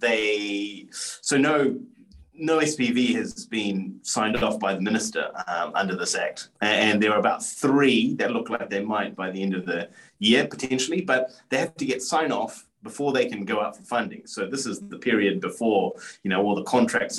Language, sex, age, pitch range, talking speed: English, male, 30-49, 100-130 Hz, 205 wpm